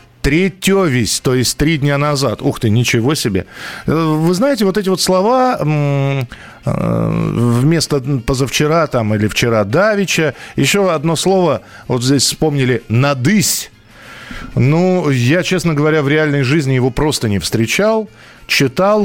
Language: Russian